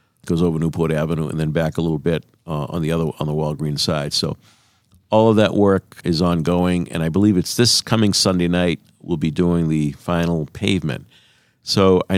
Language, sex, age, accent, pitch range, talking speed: English, male, 50-69, American, 85-105 Hz, 195 wpm